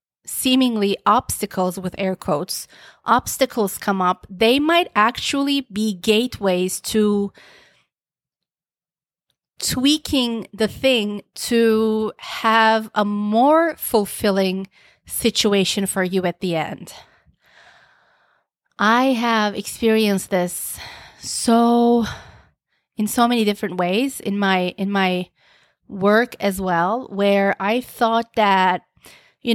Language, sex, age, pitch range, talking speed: English, female, 30-49, 195-240 Hz, 100 wpm